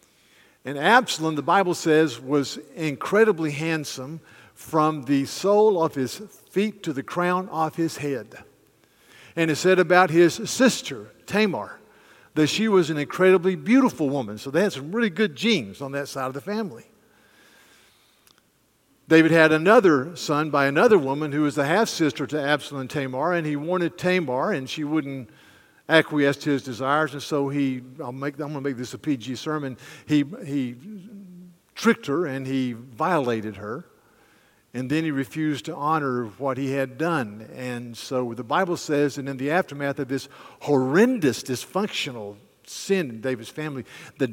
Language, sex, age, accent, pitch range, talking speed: English, male, 50-69, American, 135-175 Hz, 165 wpm